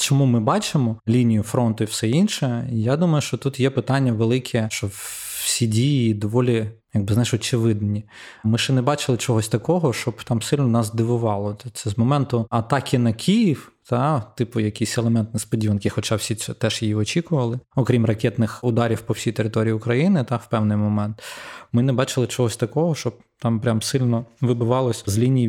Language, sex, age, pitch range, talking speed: Ukrainian, male, 20-39, 110-130 Hz, 170 wpm